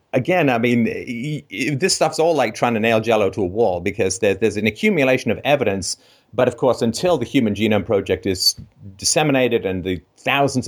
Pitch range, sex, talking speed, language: 105-140 Hz, male, 185 wpm, English